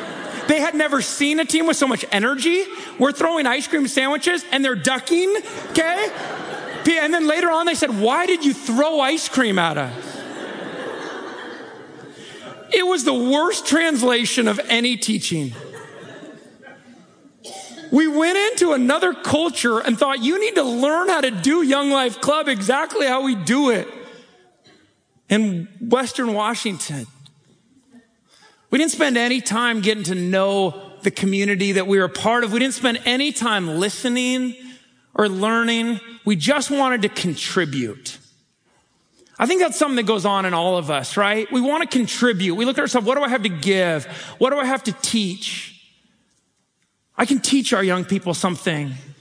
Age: 30-49